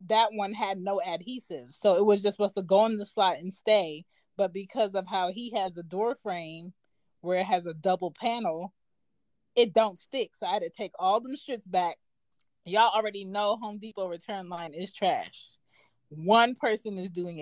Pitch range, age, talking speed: 175-225 Hz, 20-39, 195 wpm